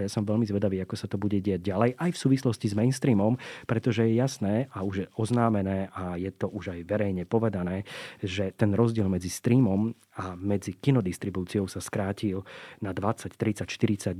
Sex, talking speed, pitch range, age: male, 175 wpm, 105-125 Hz, 30-49